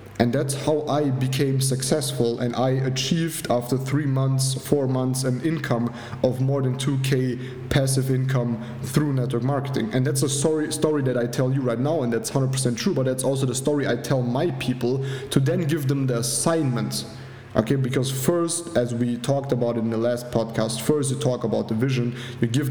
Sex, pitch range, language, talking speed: male, 125-140 Hz, English, 195 wpm